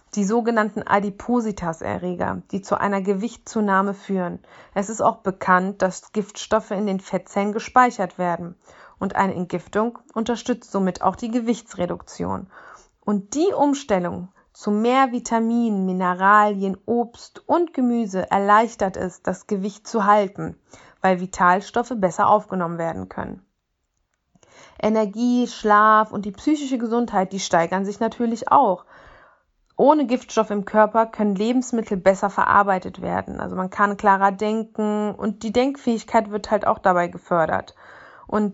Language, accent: German, German